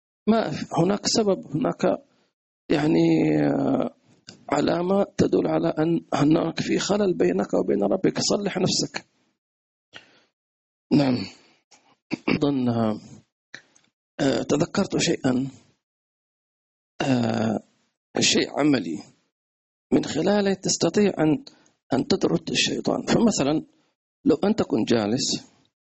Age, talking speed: 40-59, 75 wpm